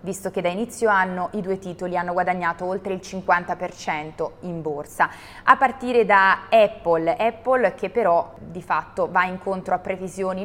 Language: Italian